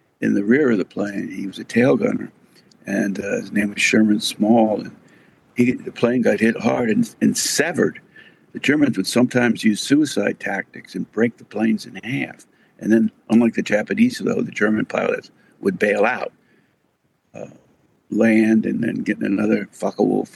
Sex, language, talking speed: male, English, 175 wpm